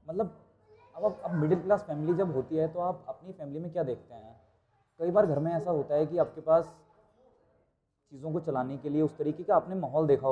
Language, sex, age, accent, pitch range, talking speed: Hindi, male, 30-49, native, 135-175 Hz, 220 wpm